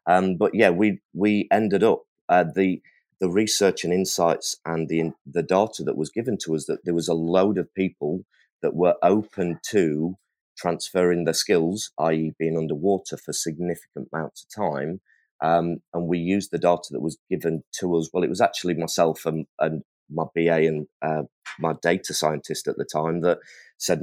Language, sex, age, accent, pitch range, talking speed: English, male, 30-49, British, 80-90 Hz, 185 wpm